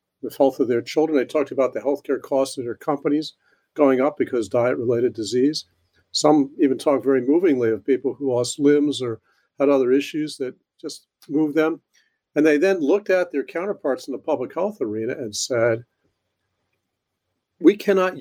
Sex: male